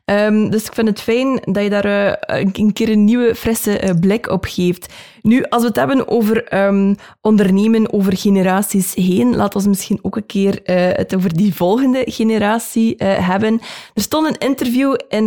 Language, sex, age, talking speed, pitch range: Dutch, female, 20-39, 195 wpm, 195-230 Hz